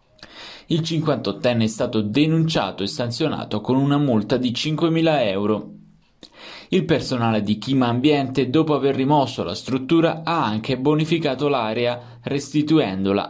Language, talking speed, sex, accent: Italian, 125 wpm, male, native